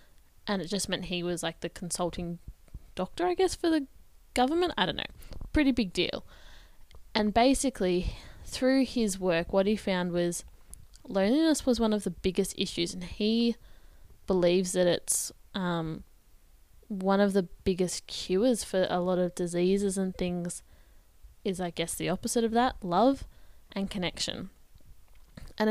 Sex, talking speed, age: female, 155 wpm, 10-29